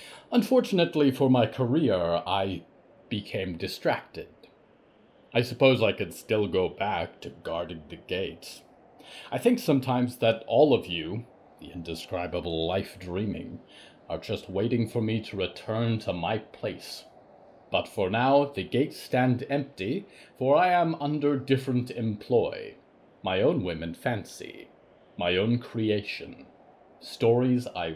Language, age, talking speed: English, 40-59, 130 wpm